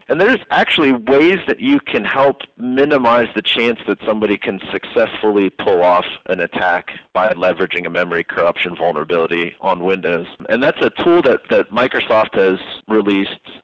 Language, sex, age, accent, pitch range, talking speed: English, male, 40-59, American, 95-130 Hz, 160 wpm